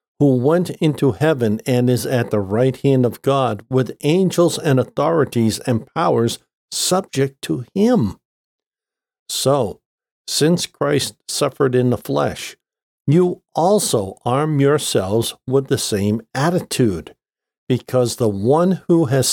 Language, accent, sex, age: English, American, male, 50-69